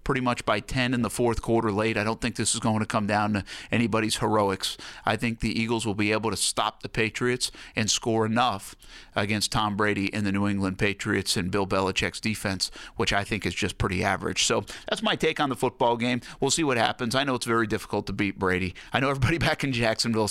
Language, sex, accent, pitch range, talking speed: English, male, American, 105-130 Hz, 235 wpm